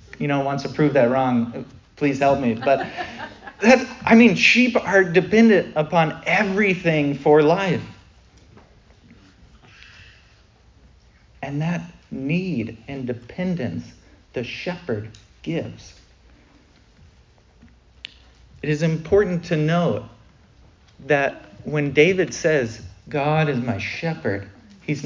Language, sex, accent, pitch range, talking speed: English, male, American, 110-165 Hz, 105 wpm